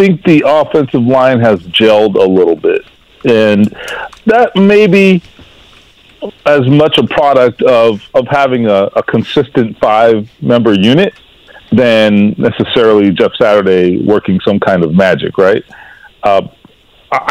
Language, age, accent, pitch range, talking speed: English, 40-59, American, 110-140 Hz, 130 wpm